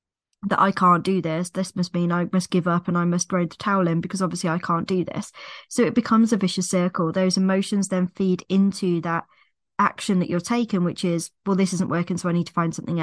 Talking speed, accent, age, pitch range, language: 245 wpm, British, 20-39, 175-205 Hz, English